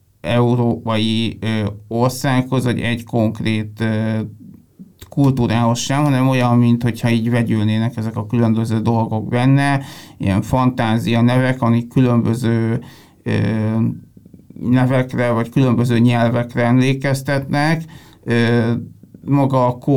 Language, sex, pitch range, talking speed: Hungarian, male, 115-130 Hz, 100 wpm